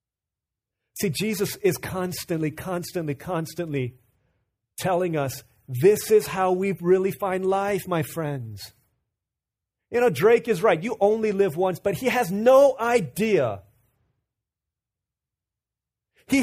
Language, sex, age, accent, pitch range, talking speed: English, male, 30-49, American, 160-245 Hz, 115 wpm